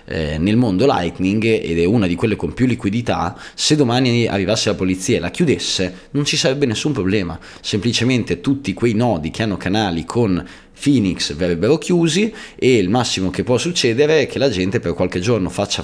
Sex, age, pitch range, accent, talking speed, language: male, 20-39, 95-125 Hz, native, 185 wpm, Italian